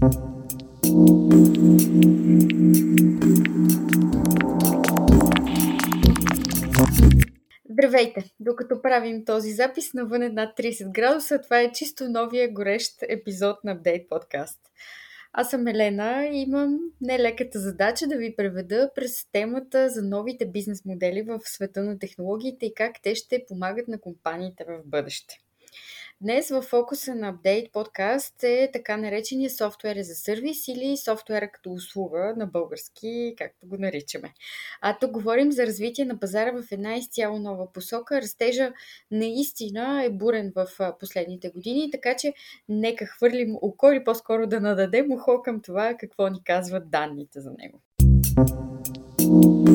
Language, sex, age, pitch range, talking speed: Bulgarian, female, 20-39, 185-245 Hz, 130 wpm